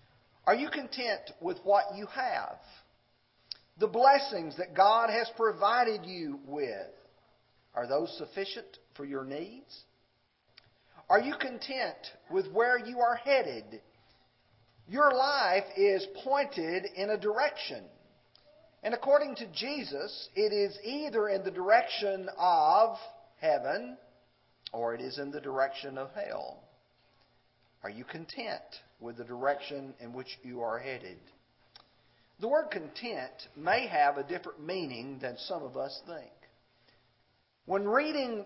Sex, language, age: male, English, 50-69